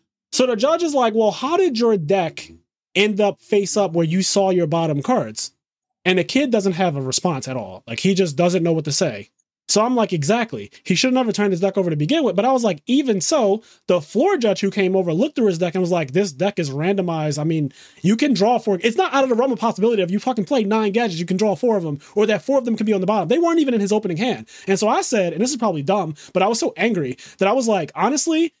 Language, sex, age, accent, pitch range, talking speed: English, male, 20-39, American, 170-225 Hz, 285 wpm